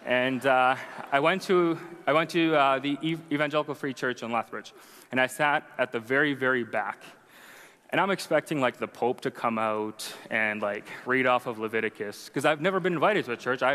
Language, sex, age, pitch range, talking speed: English, male, 20-39, 120-155 Hz, 205 wpm